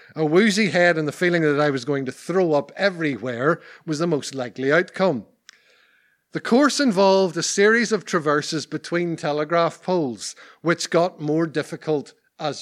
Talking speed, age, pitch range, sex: 160 wpm, 50-69, 140-190 Hz, male